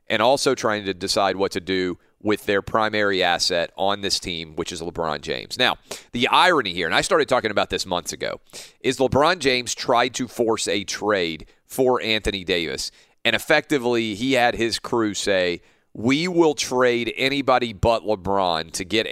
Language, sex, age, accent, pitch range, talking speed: English, male, 40-59, American, 95-125 Hz, 180 wpm